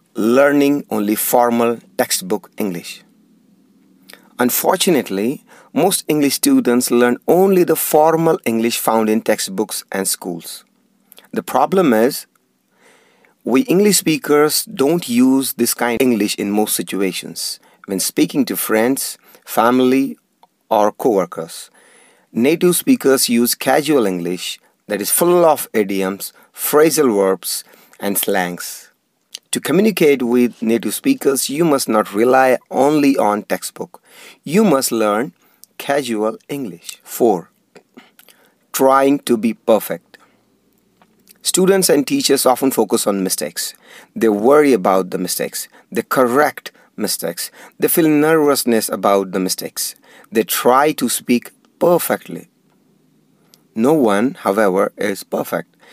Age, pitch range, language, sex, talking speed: 40-59, 115-155 Hz, English, male, 115 wpm